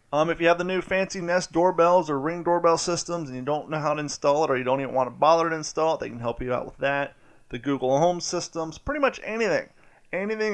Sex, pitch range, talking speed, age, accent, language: male, 135-170 Hz, 260 wpm, 30-49, American, English